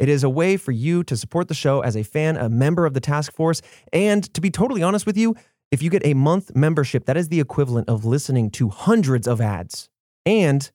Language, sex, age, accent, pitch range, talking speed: English, male, 20-39, American, 125-165 Hz, 240 wpm